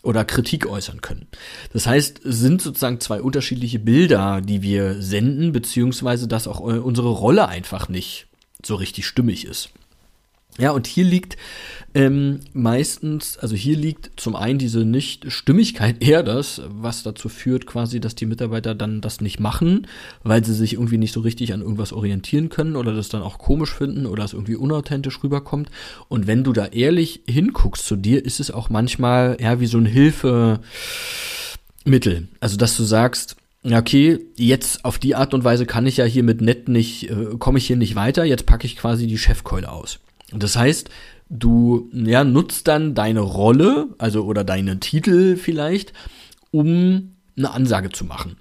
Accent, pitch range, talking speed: German, 110-140 Hz, 175 wpm